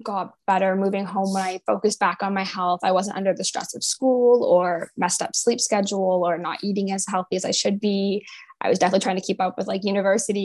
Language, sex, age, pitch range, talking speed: English, female, 10-29, 185-220 Hz, 240 wpm